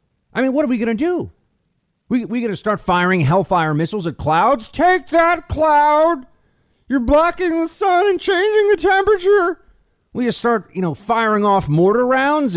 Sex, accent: male, American